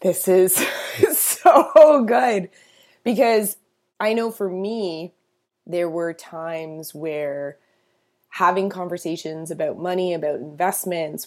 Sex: female